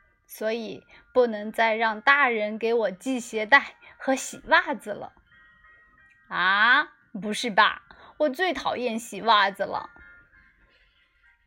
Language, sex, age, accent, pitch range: Chinese, female, 30-49, native, 215-325 Hz